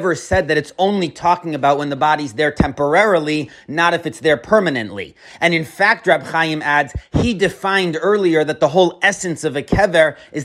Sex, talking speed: male, 190 wpm